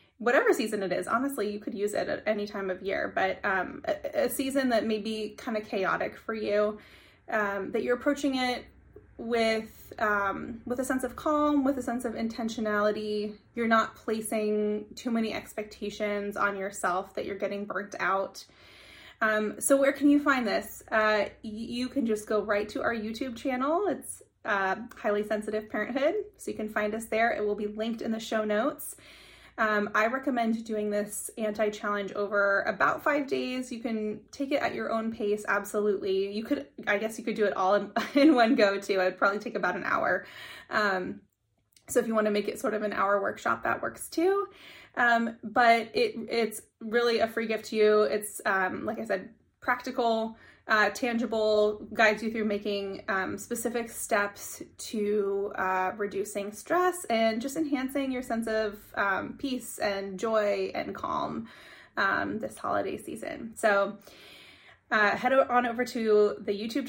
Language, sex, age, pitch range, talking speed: English, female, 20-39, 210-250 Hz, 180 wpm